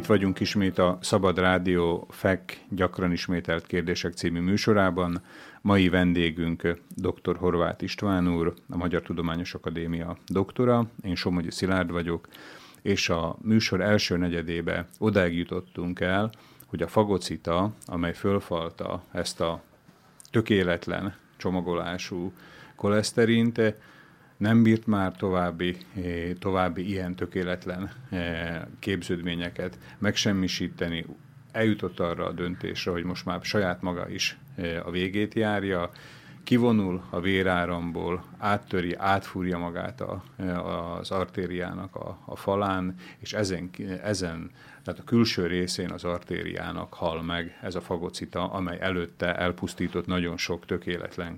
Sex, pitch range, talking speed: male, 85-100 Hz, 115 wpm